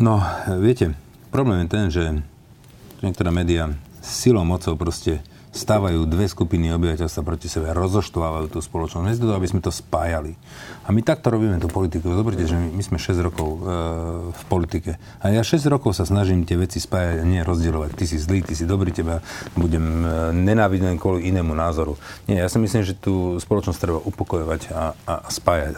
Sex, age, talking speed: male, 40-59, 175 wpm